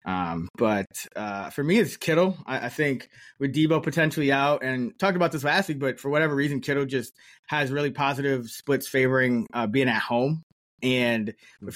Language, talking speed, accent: English, 190 wpm, American